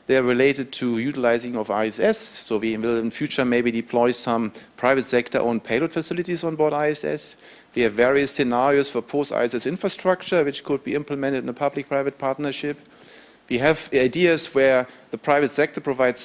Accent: German